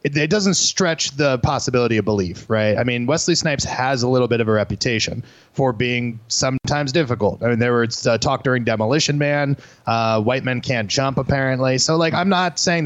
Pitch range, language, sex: 115-150 Hz, English, male